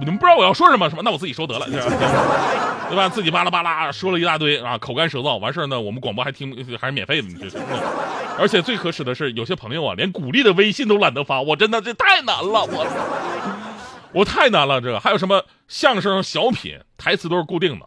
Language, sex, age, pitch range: Chinese, male, 30-49, 125-205 Hz